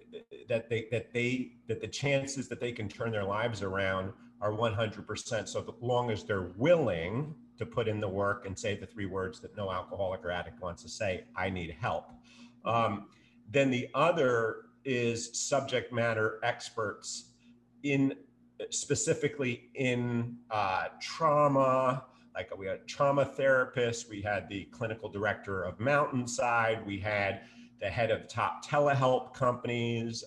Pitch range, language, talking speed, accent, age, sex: 105-120 Hz, English, 150 wpm, American, 40-59, male